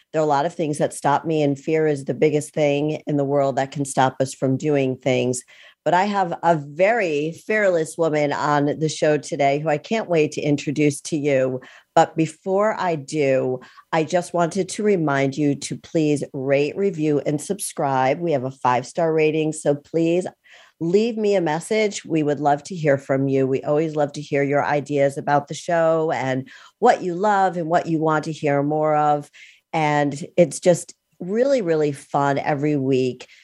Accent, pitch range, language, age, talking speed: American, 145-170 Hz, English, 50-69, 195 wpm